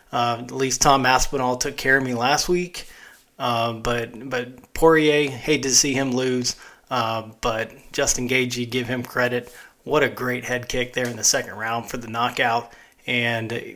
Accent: American